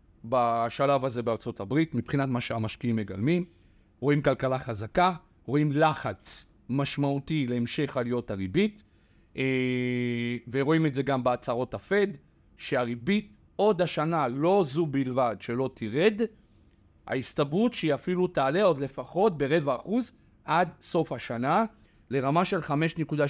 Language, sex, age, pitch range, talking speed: Hebrew, male, 40-59, 125-170 Hz, 120 wpm